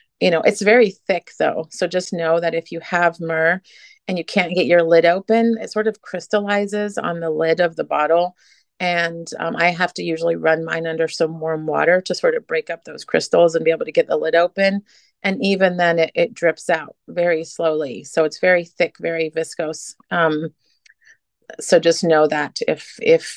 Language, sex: English, female